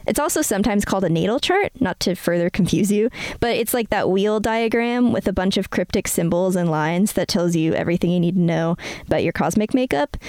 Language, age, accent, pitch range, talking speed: English, 20-39, American, 185-235 Hz, 220 wpm